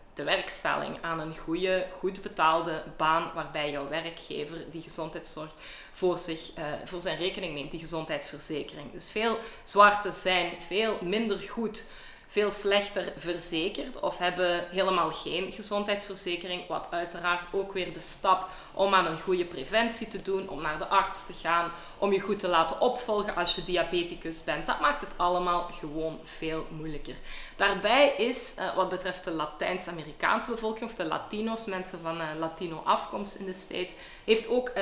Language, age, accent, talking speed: Dutch, 20-39, Belgian, 160 wpm